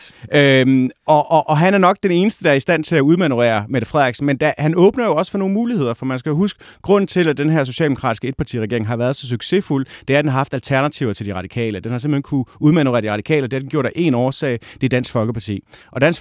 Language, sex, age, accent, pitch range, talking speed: Danish, male, 30-49, native, 125-155 Hz, 270 wpm